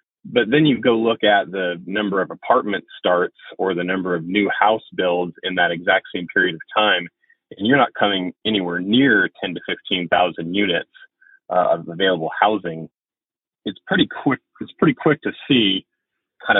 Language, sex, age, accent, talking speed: English, male, 30-49, American, 170 wpm